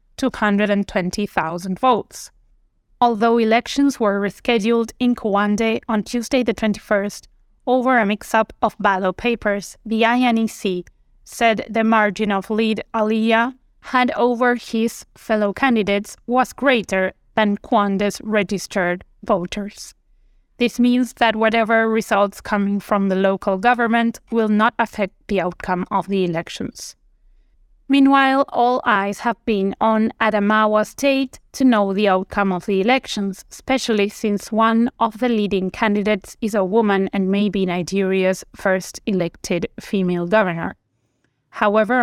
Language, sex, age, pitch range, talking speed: English, female, 20-39, 195-230 Hz, 125 wpm